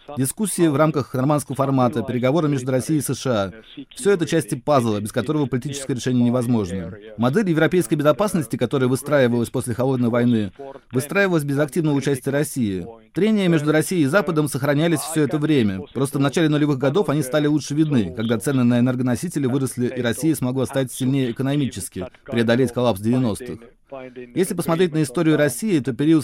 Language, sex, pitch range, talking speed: Russian, male, 125-155 Hz, 165 wpm